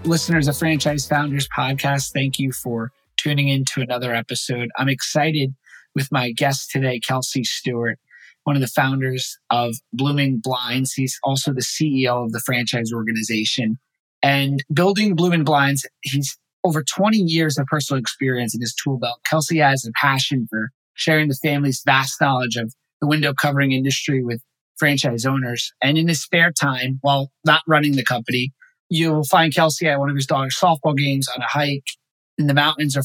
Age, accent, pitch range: 30-49, American, 130-155 Hz